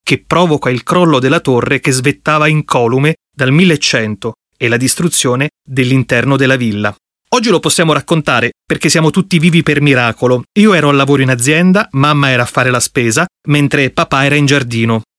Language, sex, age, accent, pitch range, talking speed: Italian, male, 30-49, native, 135-170 Hz, 180 wpm